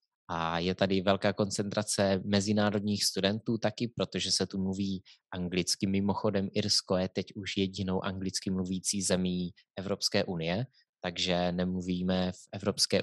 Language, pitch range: Czech, 95-105 Hz